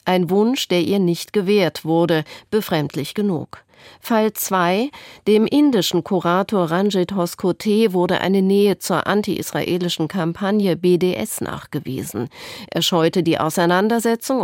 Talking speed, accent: 115 wpm, German